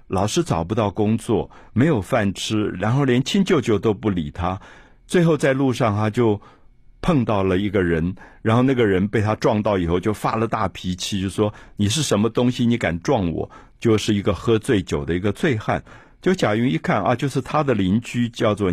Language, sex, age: Chinese, male, 50-69